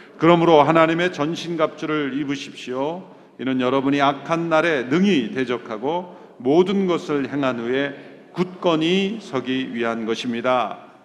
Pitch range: 125-165 Hz